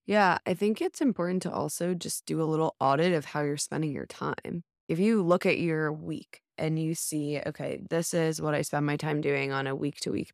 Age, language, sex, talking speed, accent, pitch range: 20-39, English, female, 225 wpm, American, 155-175 Hz